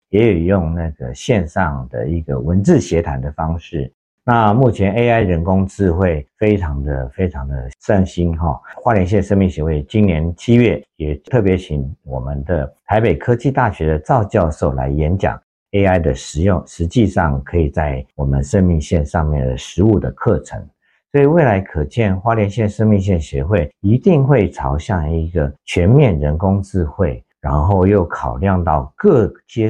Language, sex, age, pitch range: Chinese, male, 50-69, 75-105 Hz